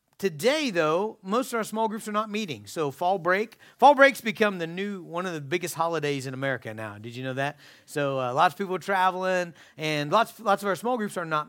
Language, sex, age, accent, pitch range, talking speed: English, male, 40-59, American, 150-200 Hz, 225 wpm